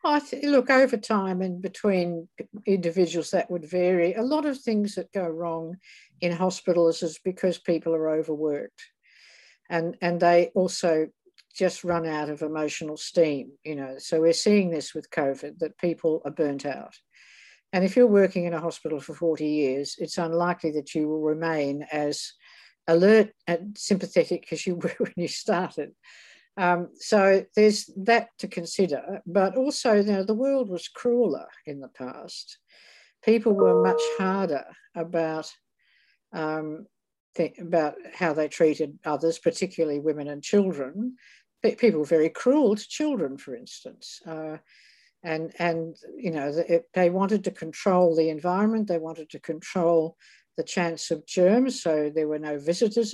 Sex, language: female, English